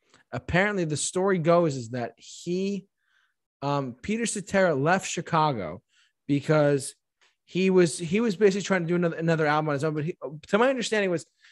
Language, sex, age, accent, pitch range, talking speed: English, male, 20-39, American, 145-180 Hz, 165 wpm